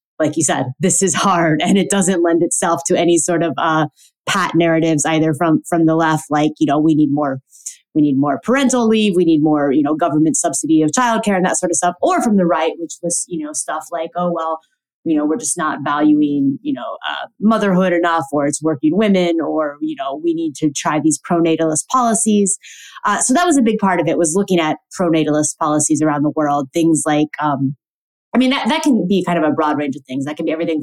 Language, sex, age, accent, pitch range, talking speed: English, female, 20-39, American, 155-190 Hz, 235 wpm